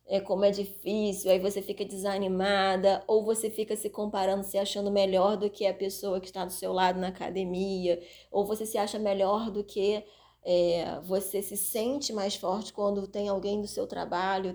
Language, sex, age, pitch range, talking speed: Portuguese, female, 20-39, 185-210 Hz, 180 wpm